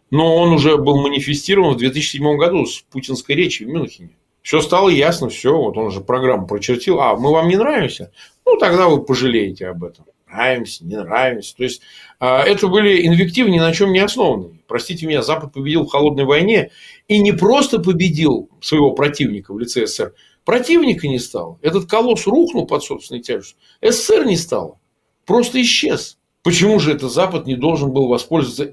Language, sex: Russian, male